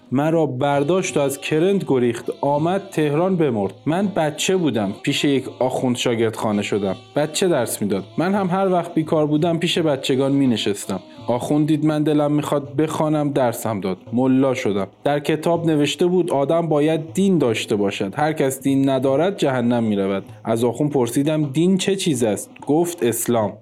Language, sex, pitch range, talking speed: Persian, male, 125-165 Hz, 165 wpm